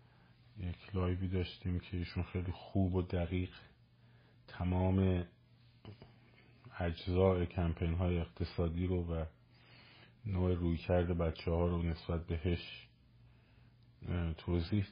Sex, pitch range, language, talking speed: male, 85-115 Hz, Persian, 100 wpm